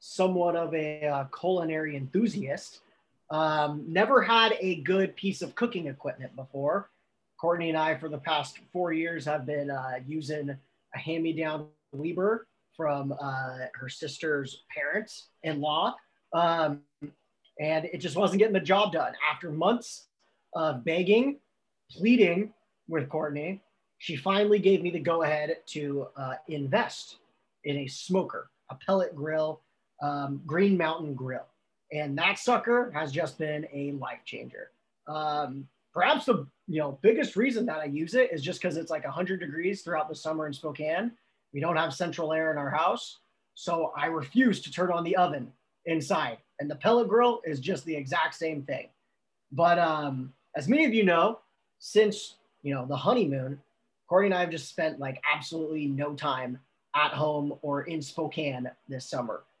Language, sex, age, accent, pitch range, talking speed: English, male, 30-49, American, 145-180 Hz, 160 wpm